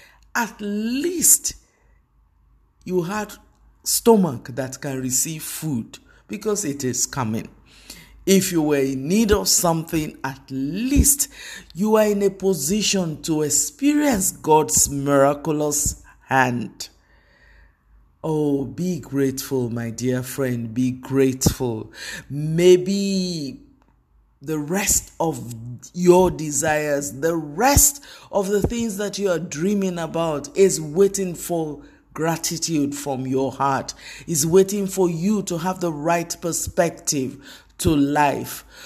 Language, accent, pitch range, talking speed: English, Nigerian, 140-190 Hz, 115 wpm